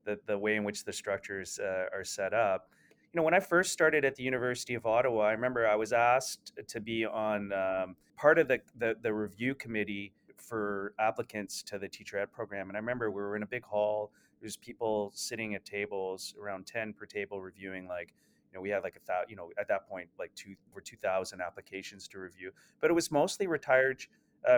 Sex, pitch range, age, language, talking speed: male, 105-125 Hz, 30-49, English, 225 wpm